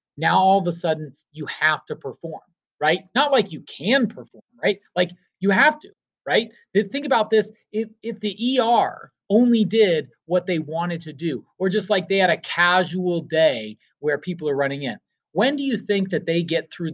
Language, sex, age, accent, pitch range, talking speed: English, male, 30-49, American, 155-220 Hz, 200 wpm